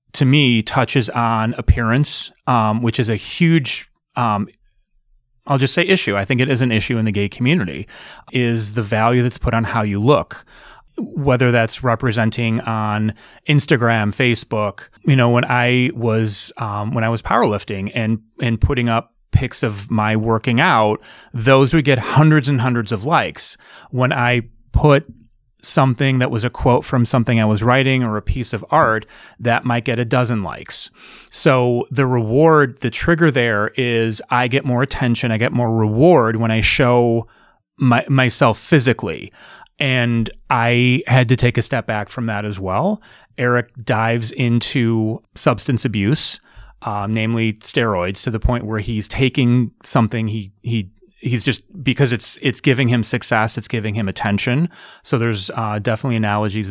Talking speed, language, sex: 165 wpm, English, male